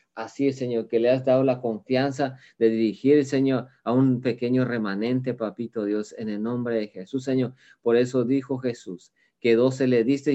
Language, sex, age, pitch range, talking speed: Spanish, male, 40-59, 115-130 Hz, 185 wpm